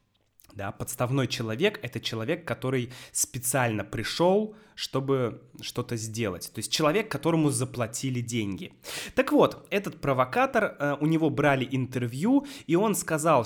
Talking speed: 130 wpm